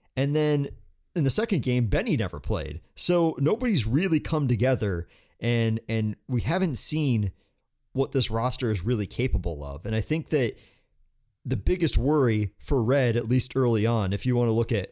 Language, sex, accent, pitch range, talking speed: English, male, American, 110-135 Hz, 180 wpm